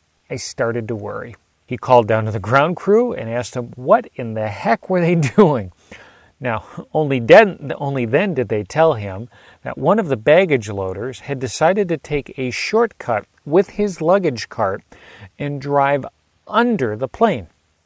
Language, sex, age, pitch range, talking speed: English, male, 40-59, 105-150 Hz, 170 wpm